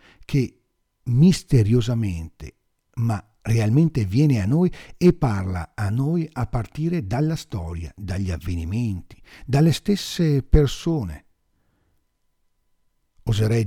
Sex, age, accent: male, 60-79, native